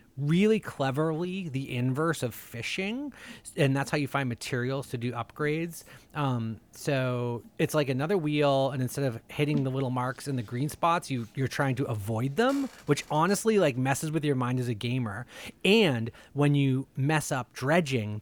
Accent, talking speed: American, 180 wpm